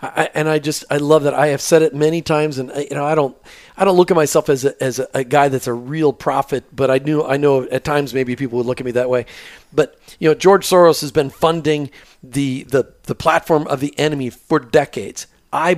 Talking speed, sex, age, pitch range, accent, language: 255 wpm, male, 40-59, 140-185 Hz, American, English